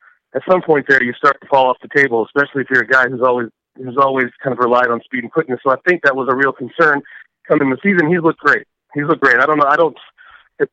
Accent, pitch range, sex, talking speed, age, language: American, 130-160 Hz, male, 280 wpm, 30-49, English